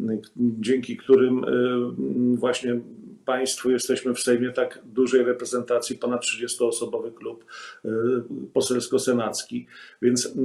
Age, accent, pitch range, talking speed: 40-59, native, 120-135 Hz, 85 wpm